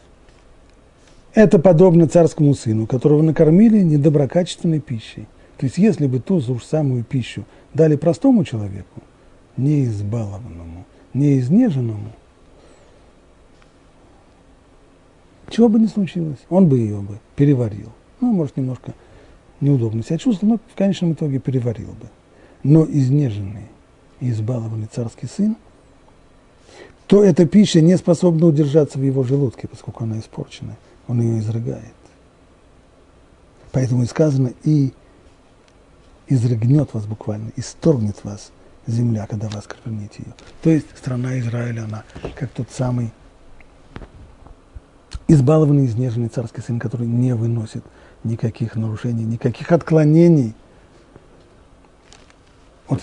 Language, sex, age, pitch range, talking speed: Russian, male, 40-59, 110-155 Hz, 110 wpm